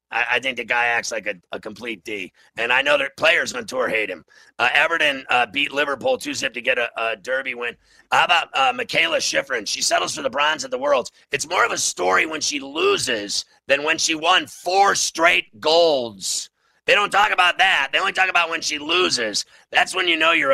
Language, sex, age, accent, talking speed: English, male, 40-59, American, 220 wpm